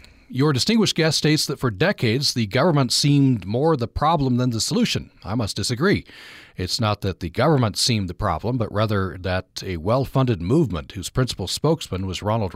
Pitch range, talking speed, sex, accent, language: 95-130 Hz, 180 wpm, male, American, English